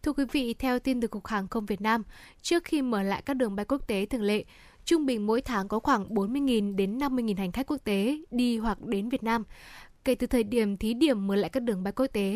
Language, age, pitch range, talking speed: Vietnamese, 10-29, 215-255 Hz, 255 wpm